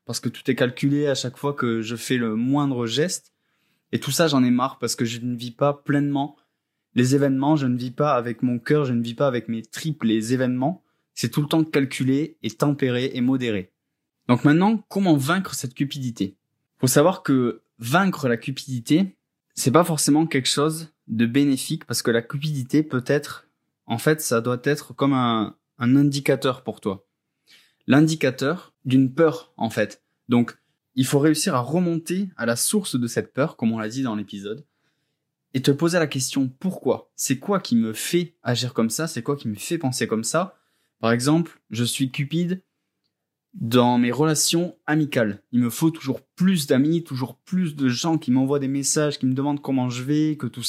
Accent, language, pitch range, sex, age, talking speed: French, French, 120-155 Hz, male, 20-39, 195 wpm